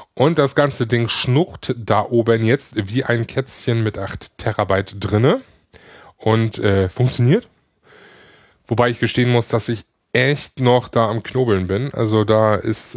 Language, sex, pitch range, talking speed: German, male, 105-130 Hz, 155 wpm